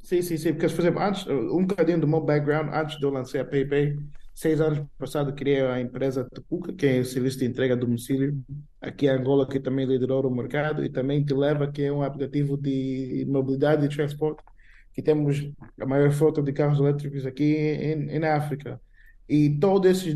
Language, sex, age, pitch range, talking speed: Portuguese, male, 20-39, 135-155 Hz, 205 wpm